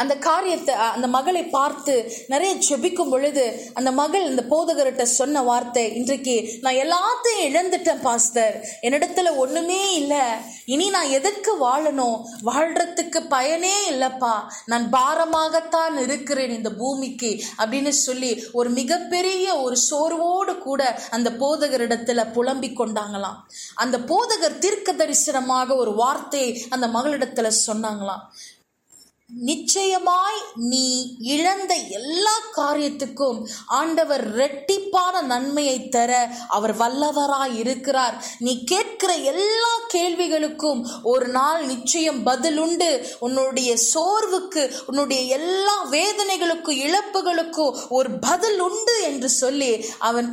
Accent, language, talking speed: native, Tamil, 100 wpm